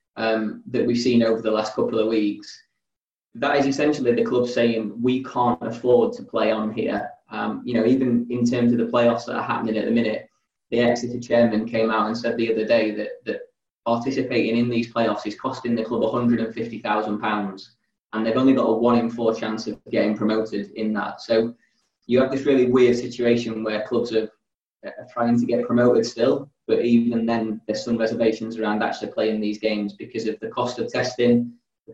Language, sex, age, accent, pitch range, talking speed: English, male, 20-39, British, 110-120 Hz, 205 wpm